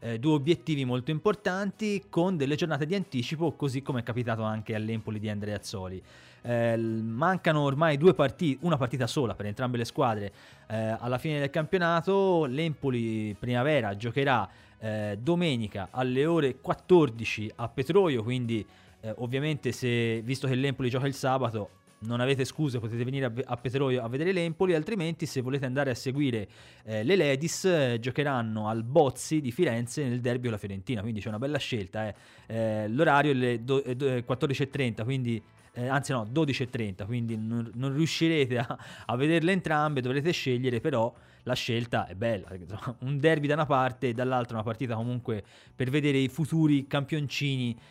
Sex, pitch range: male, 115-145 Hz